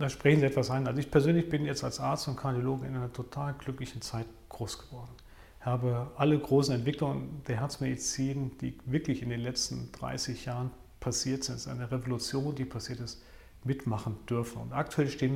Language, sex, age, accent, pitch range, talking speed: German, male, 40-59, German, 115-140 Hz, 185 wpm